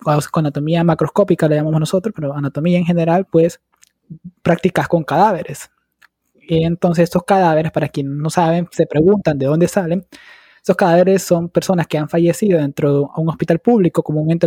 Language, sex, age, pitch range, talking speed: Spanish, male, 20-39, 150-180 Hz, 165 wpm